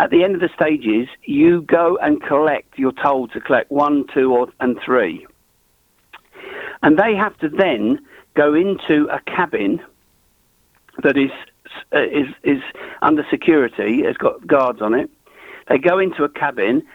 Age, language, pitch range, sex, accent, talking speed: 60-79, English, 130-180 Hz, male, British, 150 wpm